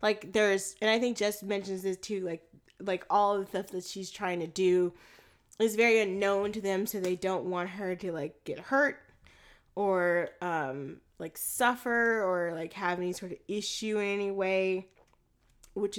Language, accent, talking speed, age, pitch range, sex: English, American, 185 wpm, 10-29, 180-225 Hz, female